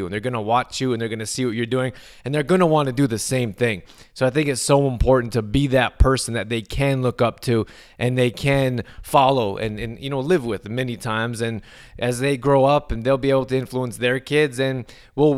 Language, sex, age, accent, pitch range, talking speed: English, male, 20-39, American, 115-135 Hz, 260 wpm